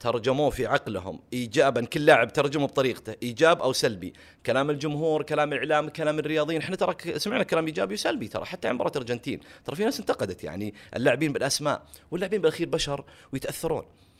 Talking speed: 160 wpm